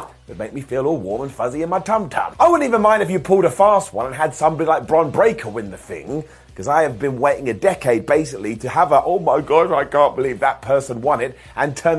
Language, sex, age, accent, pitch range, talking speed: English, male, 30-49, British, 135-190 Hz, 265 wpm